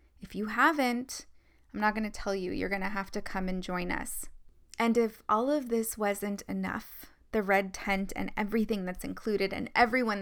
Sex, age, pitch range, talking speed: female, 20-39, 195-235 Hz, 200 wpm